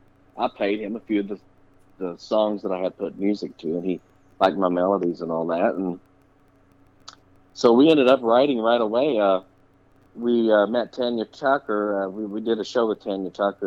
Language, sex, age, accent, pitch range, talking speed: English, male, 50-69, American, 95-110 Hz, 200 wpm